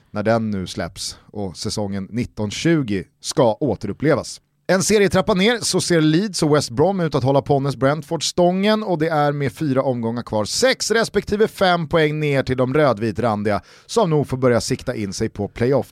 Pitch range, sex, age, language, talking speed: 115-180 Hz, male, 30-49, Swedish, 180 wpm